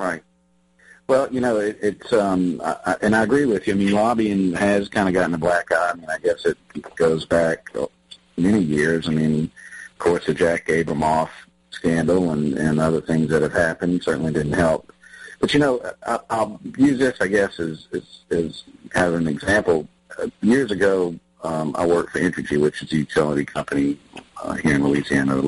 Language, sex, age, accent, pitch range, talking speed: English, male, 50-69, American, 75-95 Hz, 200 wpm